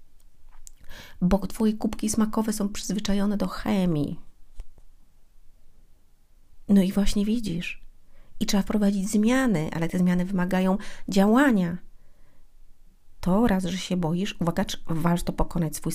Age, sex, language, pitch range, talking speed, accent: 30-49, female, Polish, 175-215 Hz, 115 wpm, native